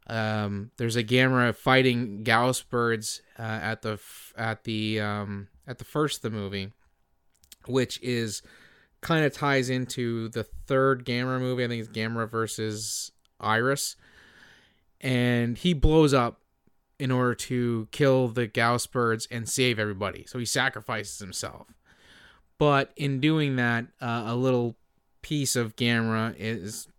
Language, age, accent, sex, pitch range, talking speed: English, 20-39, American, male, 110-130 Hz, 145 wpm